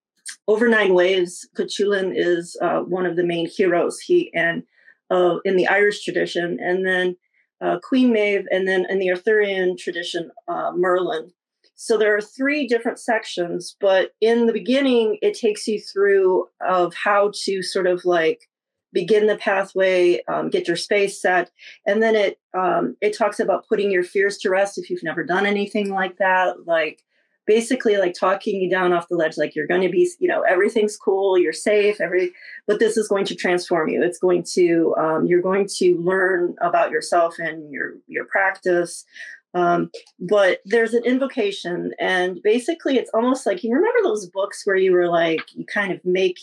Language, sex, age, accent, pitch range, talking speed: English, female, 40-59, American, 180-220 Hz, 185 wpm